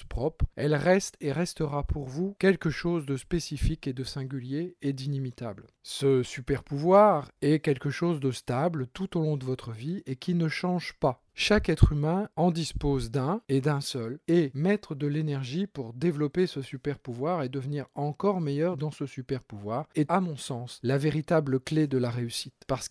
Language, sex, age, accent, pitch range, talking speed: French, male, 40-59, French, 135-170 Hz, 190 wpm